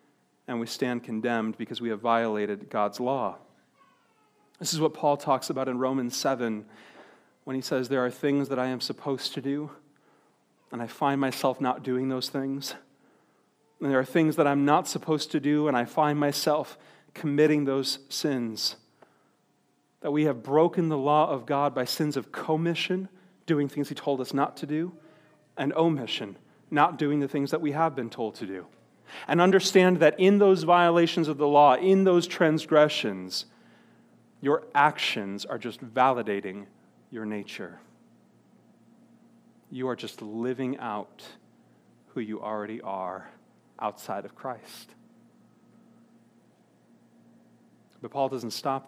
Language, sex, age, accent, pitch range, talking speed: English, male, 40-59, American, 120-150 Hz, 150 wpm